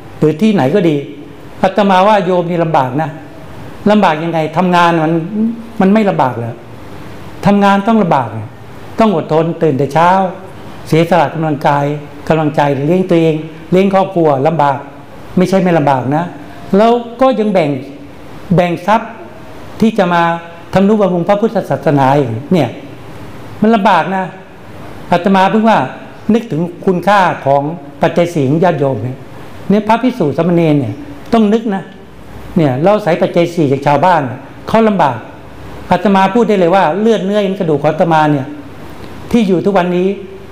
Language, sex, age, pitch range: Thai, male, 60-79, 145-200 Hz